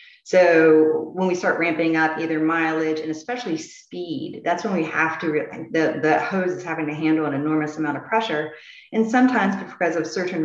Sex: female